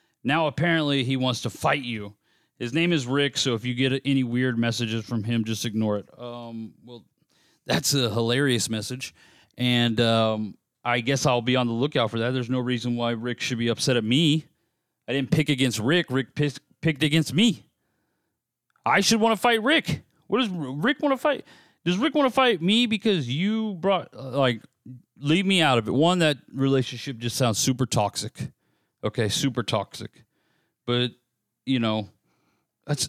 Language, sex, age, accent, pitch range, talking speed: English, male, 30-49, American, 120-155 Hz, 180 wpm